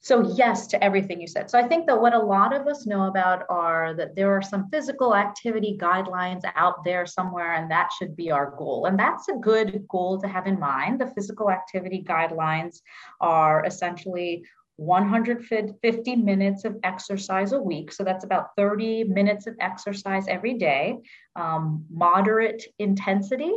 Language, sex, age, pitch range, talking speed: English, female, 30-49, 180-220 Hz, 170 wpm